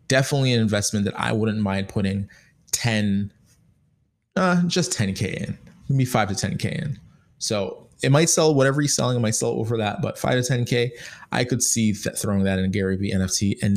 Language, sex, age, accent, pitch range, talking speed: English, male, 20-39, American, 100-130 Hz, 195 wpm